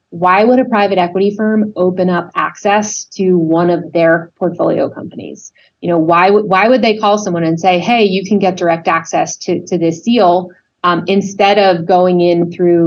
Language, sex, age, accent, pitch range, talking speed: English, female, 30-49, American, 170-210 Hz, 195 wpm